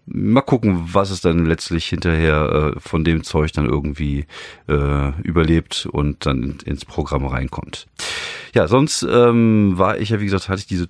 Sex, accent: male, German